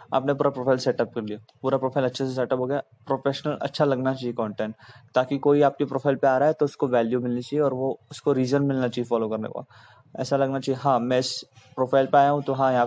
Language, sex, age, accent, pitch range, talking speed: Hindi, male, 20-39, native, 120-140 Hz, 245 wpm